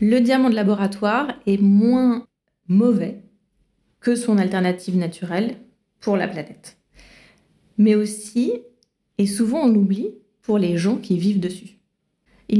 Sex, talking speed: female, 130 wpm